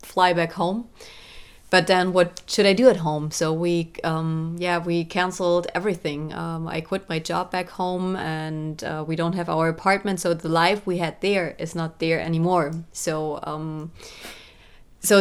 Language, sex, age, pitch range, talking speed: English, female, 30-49, 160-185 Hz, 180 wpm